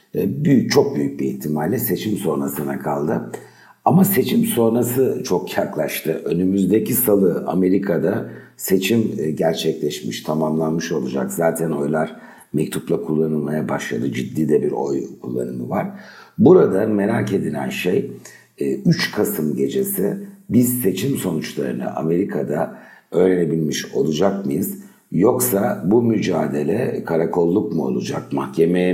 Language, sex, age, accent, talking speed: Turkish, male, 60-79, native, 110 wpm